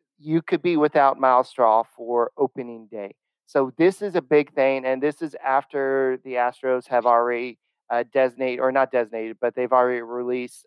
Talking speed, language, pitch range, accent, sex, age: 180 wpm, English, 125-145 Hz, American, male, 40-59